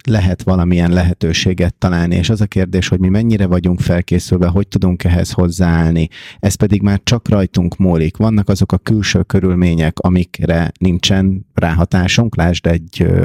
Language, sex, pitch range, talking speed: Hungarian, male, 90-105 Hz, 150 wpm